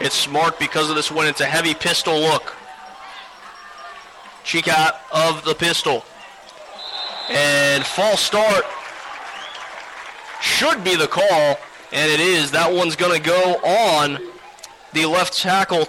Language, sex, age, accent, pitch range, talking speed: English, male, 30-49, American, 155-225 Hz, 130 wpm